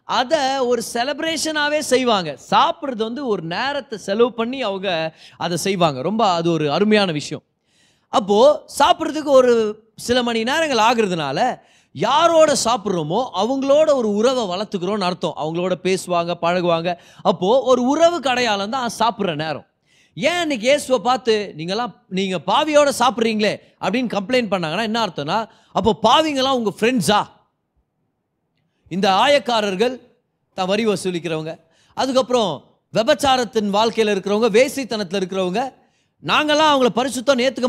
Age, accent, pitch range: 30-49, native, 195-270 Hz